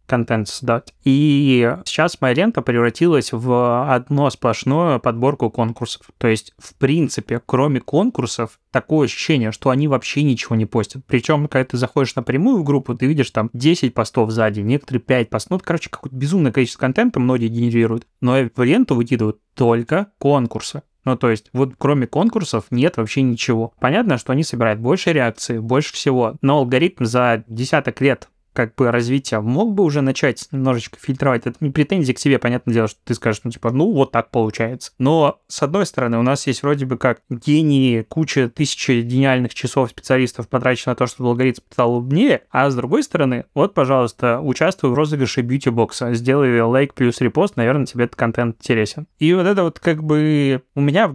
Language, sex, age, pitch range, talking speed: Russian, male, 20-39, 120-145 Hz, 185 wpm